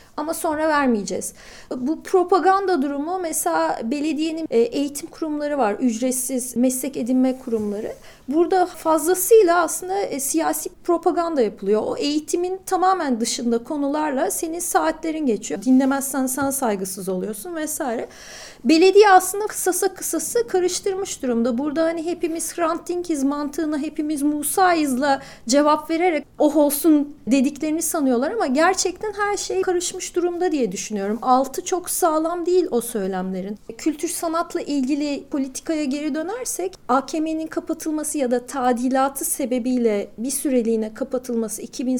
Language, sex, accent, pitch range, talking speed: Turkish, female, native, 255-340 Hz, 120 wpm